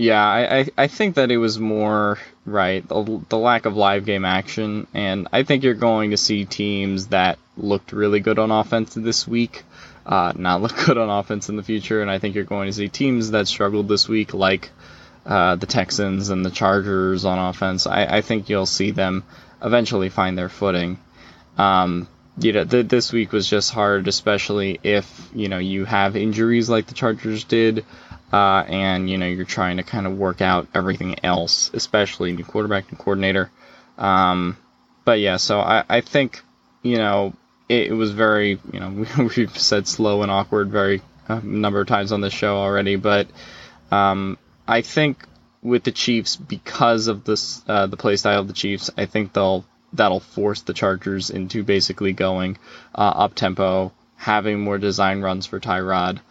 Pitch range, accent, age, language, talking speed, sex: 95-110 Hz, American, 10-29, English, 185 wpm, male